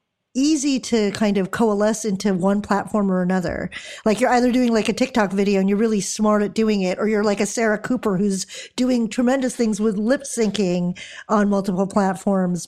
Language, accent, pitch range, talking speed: English, American, 190-230 Hz, 195 wpm